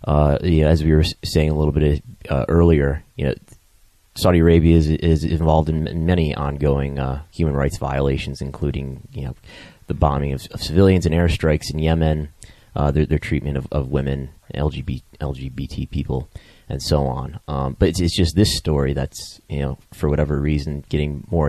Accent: American